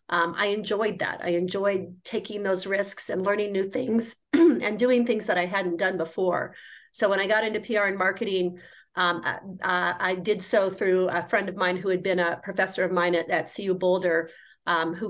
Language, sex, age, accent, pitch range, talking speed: English, female, 40-59, American, 175-200 Hz, 205 wpm